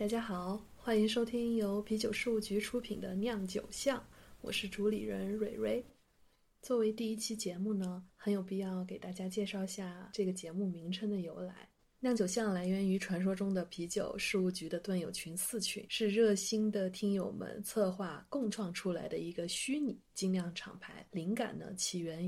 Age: 20-39